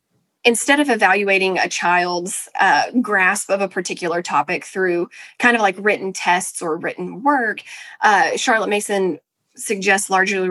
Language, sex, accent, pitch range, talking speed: English, female, American, 180-225 Hz, 145 wpm